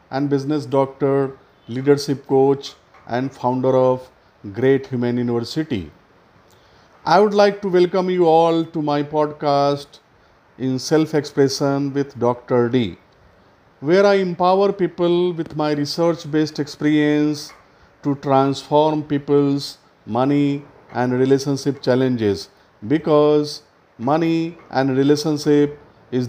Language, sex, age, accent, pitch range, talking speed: English, male, 50-69, Indian, 135-175 Hz, 105 wpm